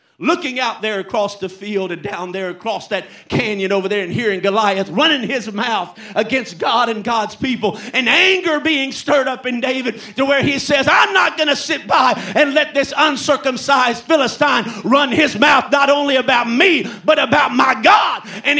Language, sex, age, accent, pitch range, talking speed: English, male, 50-69, American, 185-280 Hz, 190 wpm